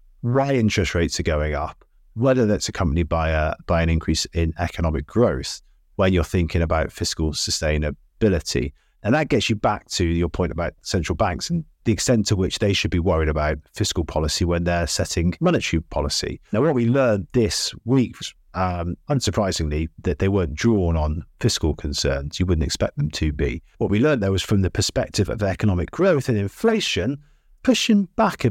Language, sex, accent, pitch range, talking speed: English, male, British, 80-105 Hz, 190 wpm